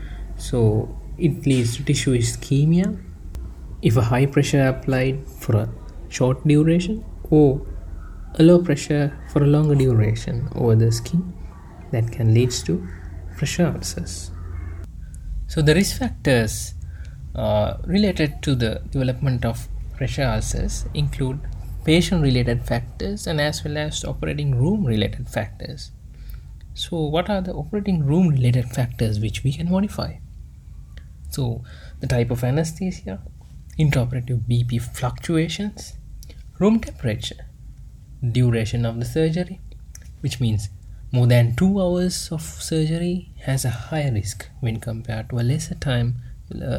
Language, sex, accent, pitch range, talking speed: English, male, Indian, 100-145 Hz, 130 wpm